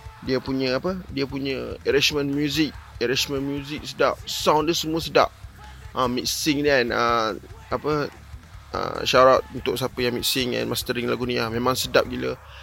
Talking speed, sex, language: 175 wpm, male, Malay